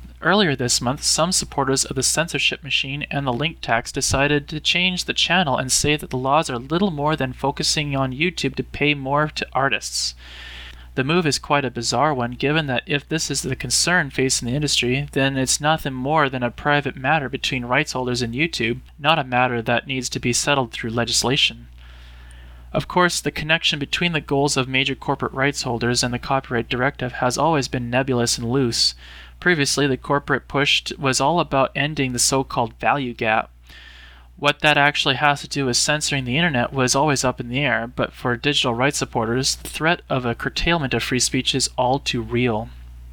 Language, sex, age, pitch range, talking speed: English, male, 20-39, 120-145 Hz, 200 wpm